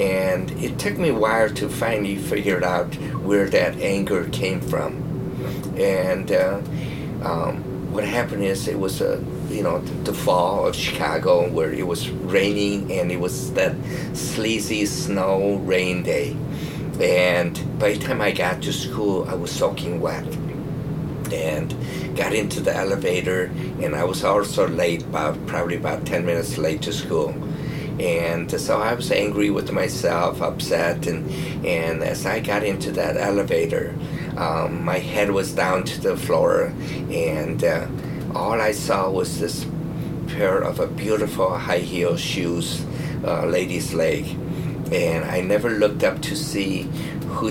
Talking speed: 150 wpm